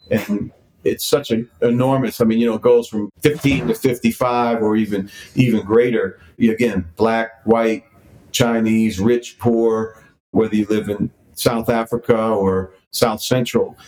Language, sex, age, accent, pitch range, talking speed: English, male, 40-59, American, 100-120 Hz, 145 wpm